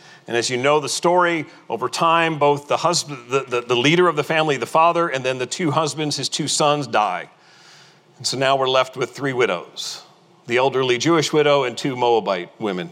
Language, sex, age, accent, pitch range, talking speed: English, male, 40-59, American, 130-170 Hz, 210 wpm